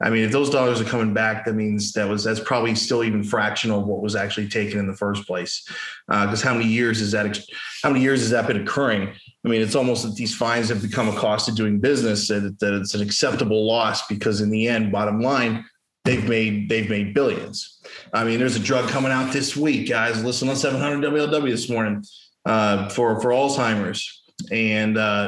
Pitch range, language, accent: 110-125 Hz, English, American